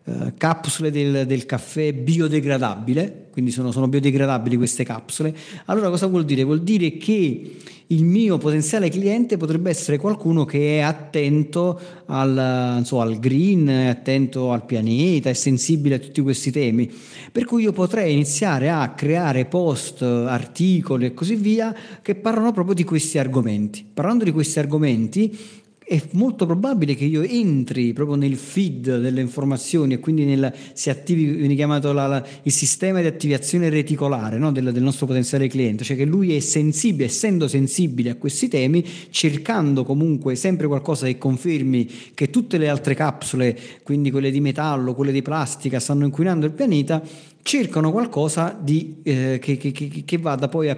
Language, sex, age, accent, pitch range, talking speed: Italian, male, 40-59, native, 130-165 Hz, 160 wpm